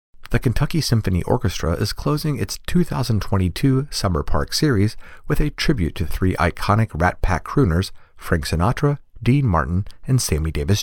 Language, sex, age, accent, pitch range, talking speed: English, male, 40-59, American, 85-120 Hz, 150 wpm